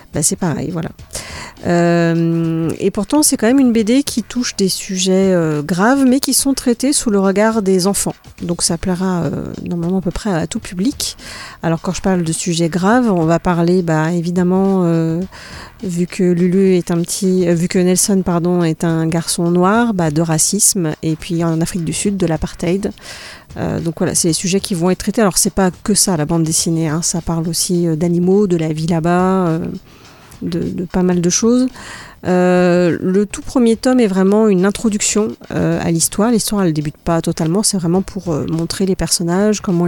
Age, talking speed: 40-59, 210 wpm